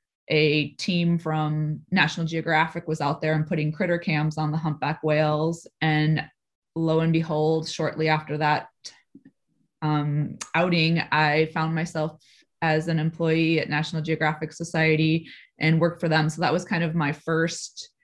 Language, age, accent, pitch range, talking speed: English, 20-39, American, 155-170 Hz, 155 wpm